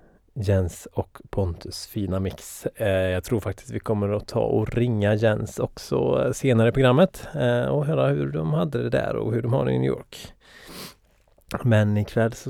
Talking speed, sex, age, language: 180 wpm, male, 30-49, Swedish